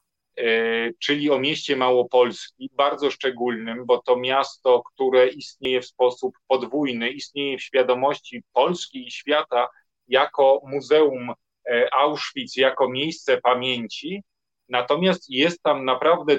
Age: 40-59